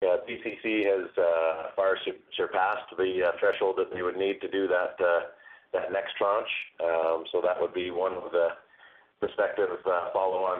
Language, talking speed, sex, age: English, 175 wpm, male, 30-49